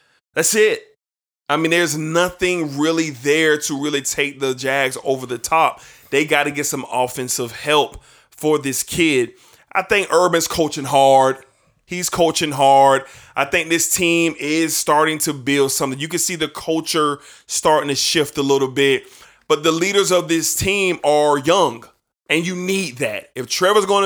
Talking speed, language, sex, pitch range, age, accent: 170 wpm, English, male, 140-175 Hz, 20-39, American